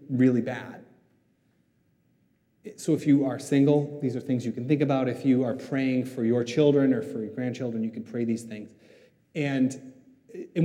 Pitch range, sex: 115-155 Hz, male